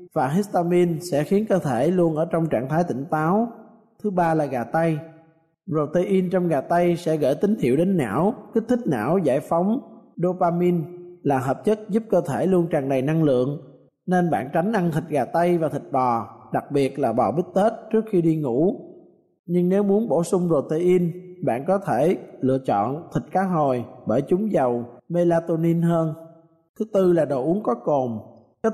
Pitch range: 150-185 Hz